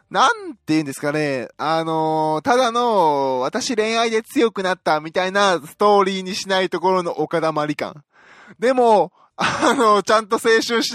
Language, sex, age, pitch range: Japanese, male, 20-39, 140-225 Hz